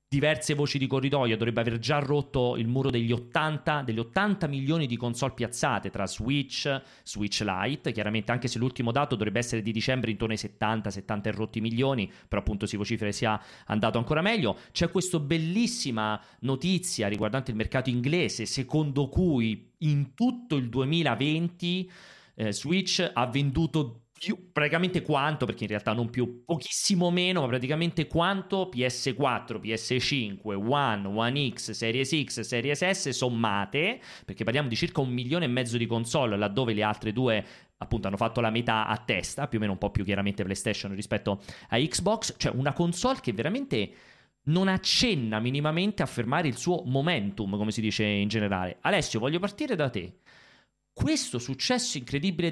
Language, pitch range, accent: Italian, 110-155 Hz, native